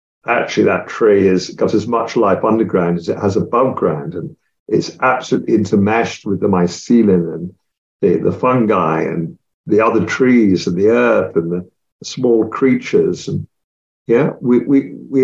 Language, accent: English, British